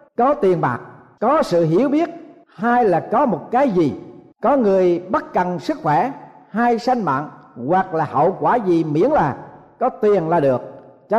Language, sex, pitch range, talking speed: Vietnamese, male, 180-265 Hz, 180 wpm